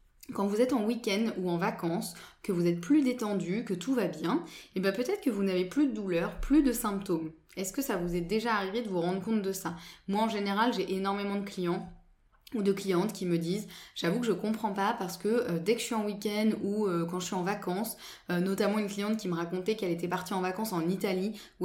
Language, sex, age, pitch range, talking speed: French, female, 20-39, 180-225 Hz, 250 wpm